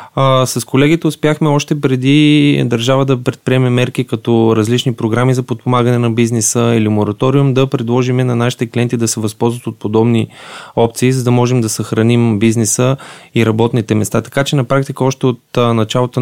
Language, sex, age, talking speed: Bulgarian, male, 20-39, 170 wpm